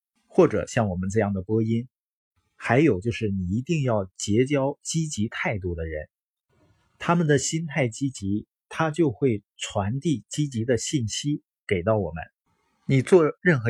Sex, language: male, Chinese